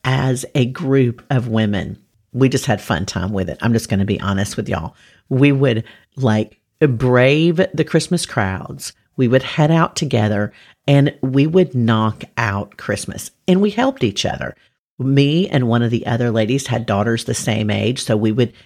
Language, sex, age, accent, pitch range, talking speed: English, female, 50-69, American, 110-140 Hz, 185 wpm